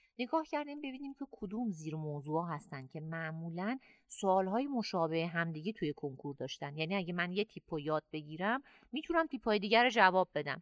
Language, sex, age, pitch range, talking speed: Persian, female, 30-49, 155-210 Hz, 160 wpm